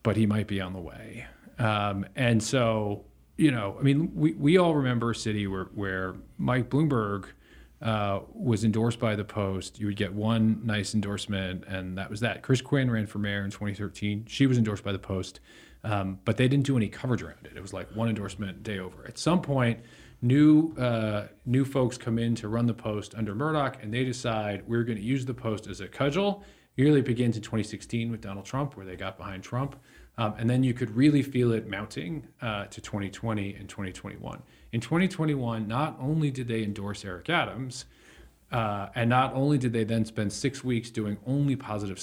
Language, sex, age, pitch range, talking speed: English, male, 40-59, 100-130 Hz, 205 wpm